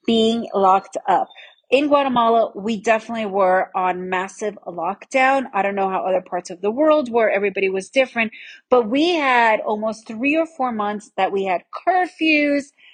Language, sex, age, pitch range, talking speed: English, female, 30-49, 205-265 Hz, 165 wpm